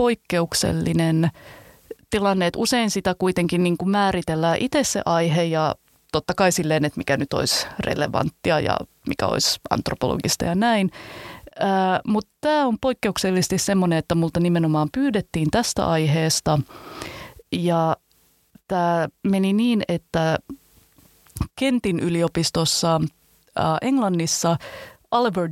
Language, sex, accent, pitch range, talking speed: Finnish, female, native, 160-195 Hz, 110 wpm